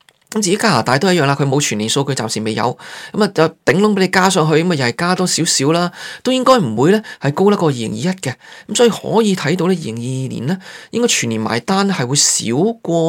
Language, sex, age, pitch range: Chinese, male, 20-39, 140-195 Hz